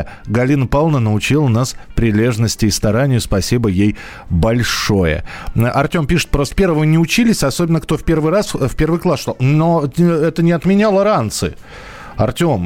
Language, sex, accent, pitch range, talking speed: Russian, male, native, 115-155 Hz, 145 wpm